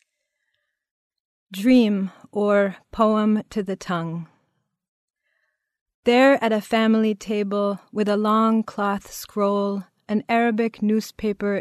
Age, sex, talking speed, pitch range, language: 40-59, female, 100 wpm, 190-215 Hz, English